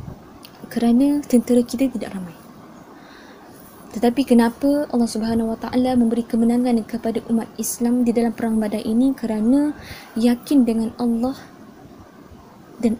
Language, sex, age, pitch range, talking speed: Malay, female, 20-39, 230-255 Hz, 115 wpm